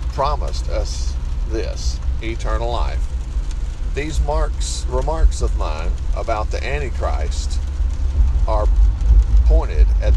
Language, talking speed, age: English, 95 wpm, 50-69